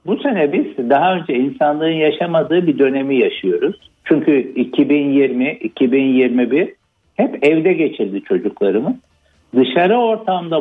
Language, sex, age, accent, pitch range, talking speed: Turkish, male, 60-79, native, 140-205 Hz, 100 wpm